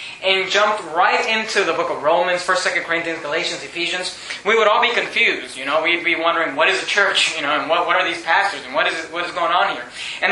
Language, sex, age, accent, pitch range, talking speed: English, male, 20-39, American, 170-215 Hz, 260 wpm